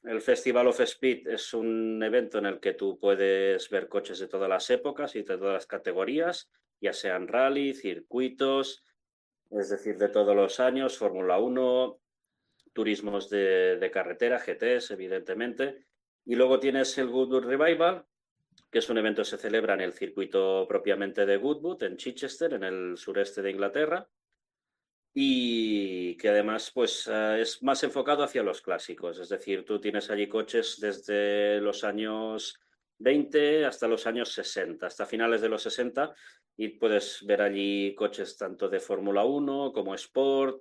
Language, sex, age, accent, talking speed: English, male, 30-49, Spanish, 160 wpm